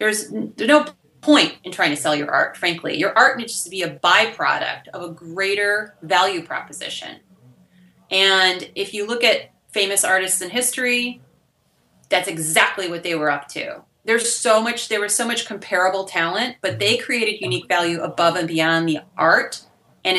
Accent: American